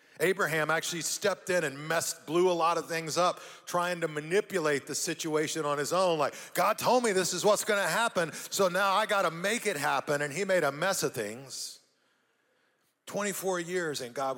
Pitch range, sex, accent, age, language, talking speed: 150-195 Hz, male, American, 40-59, English, 205 wpm